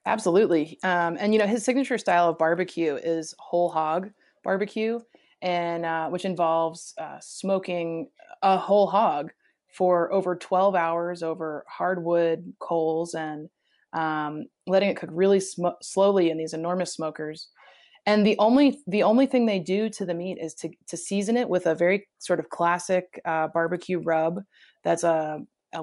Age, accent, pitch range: 20-39, American, 170-215 Hz